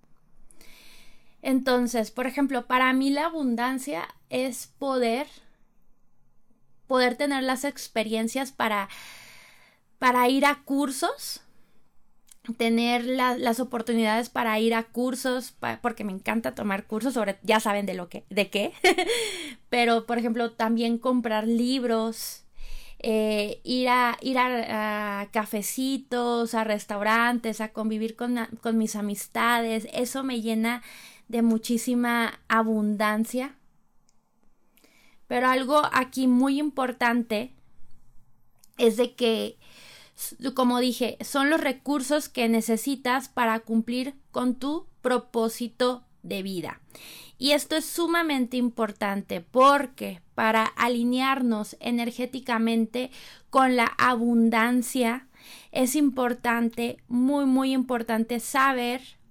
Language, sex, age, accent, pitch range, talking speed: Spanish, female, 20-39, Mexican, 225-260 Hz, 110 wpm